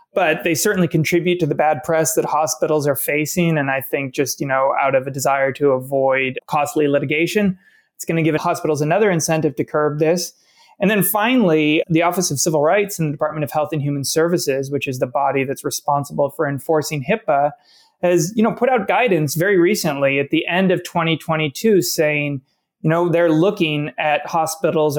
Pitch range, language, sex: 150-180 Hz, English, male